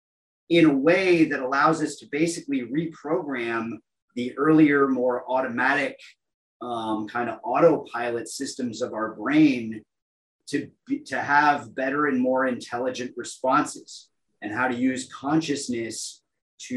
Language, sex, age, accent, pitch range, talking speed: English, male, 30-49, American, 120-155 Hz, 125 wpm